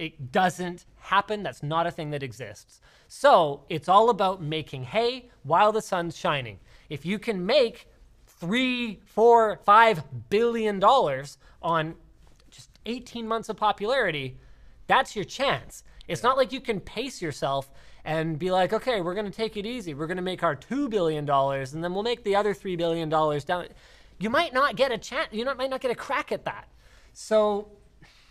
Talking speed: 180 wpm